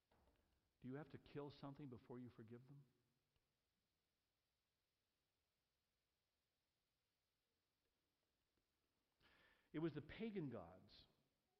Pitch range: 110-175 Hz